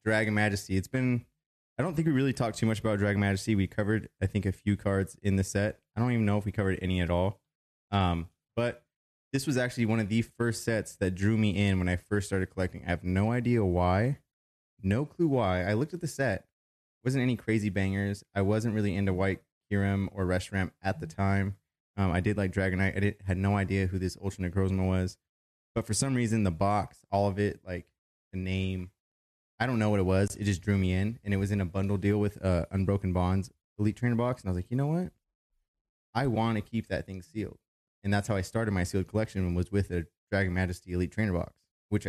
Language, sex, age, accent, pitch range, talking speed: English, male, 20-39, American, 95-110 Hz, 235 wpm